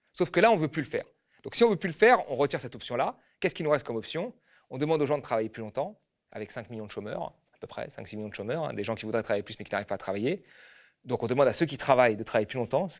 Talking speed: 330 wpm